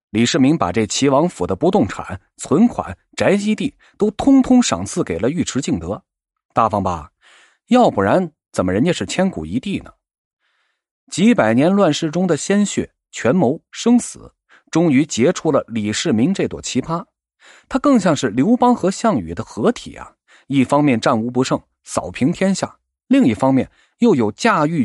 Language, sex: Chinese, male